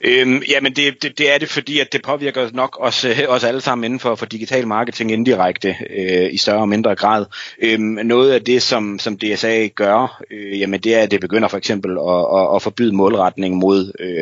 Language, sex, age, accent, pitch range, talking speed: Danish, male, 30-49, native, 95-115 Hz, 215 wpm